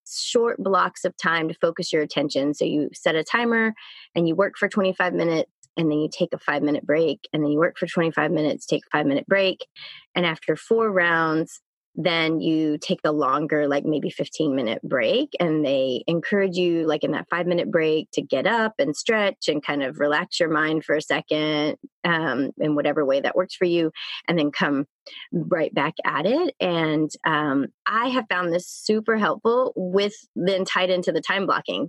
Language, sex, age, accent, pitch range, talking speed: English, female, 30-49, American, 155-195 Hz, 200 wpm